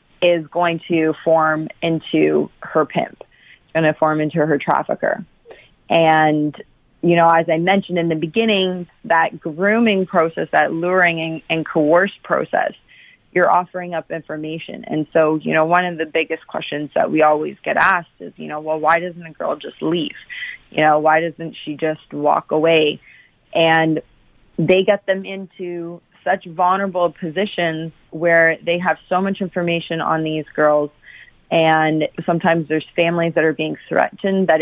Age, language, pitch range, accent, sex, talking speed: 30-49, English, 155-175 Hz, American, female, 160 wpm